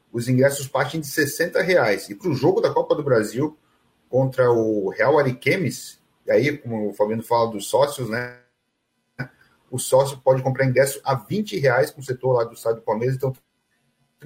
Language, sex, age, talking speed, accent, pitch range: Portuguese, male, 40-59, 190 wpm, Brazilian, 120-150 Hz